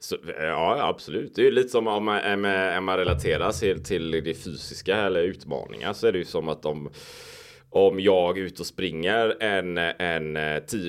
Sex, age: male, 20-39